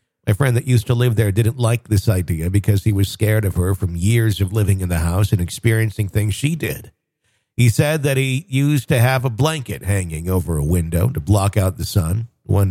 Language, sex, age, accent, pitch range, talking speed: English, male, 50-69, American, 95-120 Hz, 225 wpm